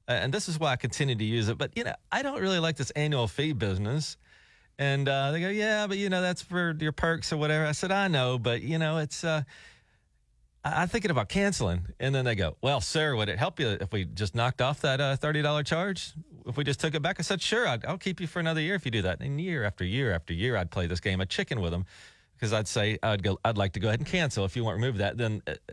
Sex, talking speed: male, 280 wpm